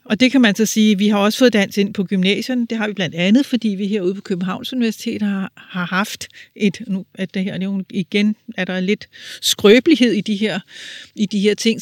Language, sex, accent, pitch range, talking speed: Danish, female, native, 195-225 Hz, 245 wpm